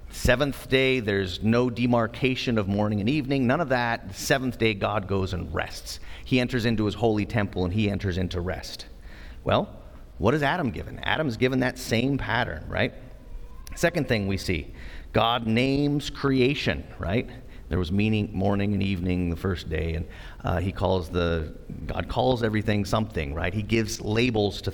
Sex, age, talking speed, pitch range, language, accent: male, 40-59, 175 wpm, 95-130 Hz, English, American